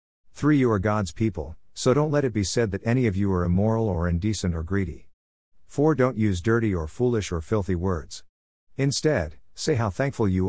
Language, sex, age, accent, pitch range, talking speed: English, male, 50-69, American, 90-115 Hz, 200 wpm